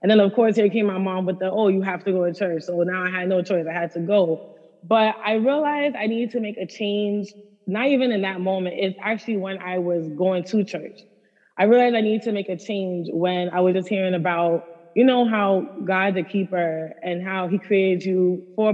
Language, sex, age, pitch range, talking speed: English, female, 20-39, 180-205 Hz, 240 wpm